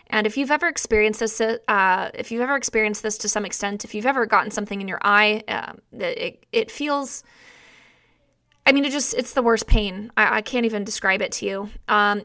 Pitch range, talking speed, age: 210-245 Hz, 205 wpm, 20-39